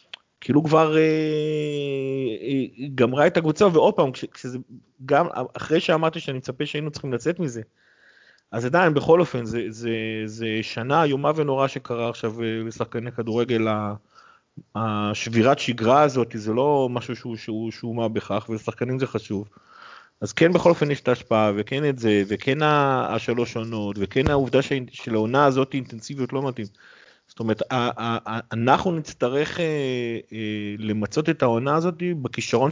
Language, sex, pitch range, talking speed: Hebrew, male, 115-150 Hz, 145 wpm